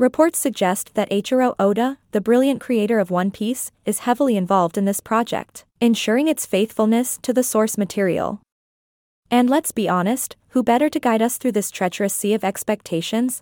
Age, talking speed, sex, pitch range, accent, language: 20-39, 175 wpm, female, 200-245 Hz, American, English